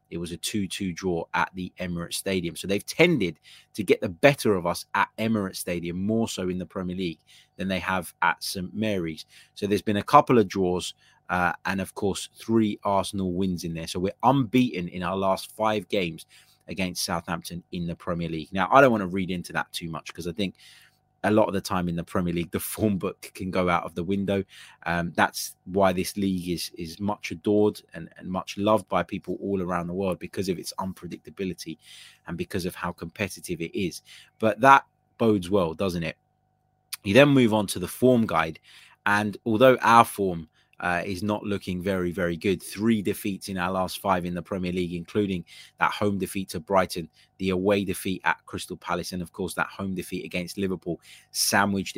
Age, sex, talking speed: 20-39, male, 210 wpm